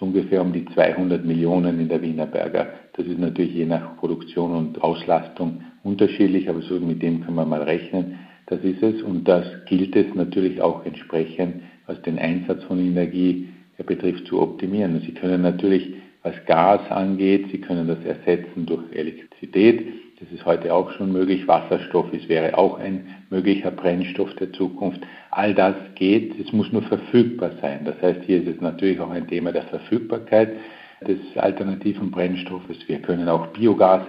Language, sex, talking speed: German, male, 165 wpm